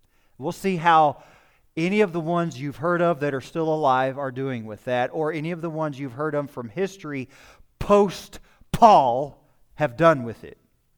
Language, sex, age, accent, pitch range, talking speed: English, male, 40-59, American, 130-175 Hz, 185 wpm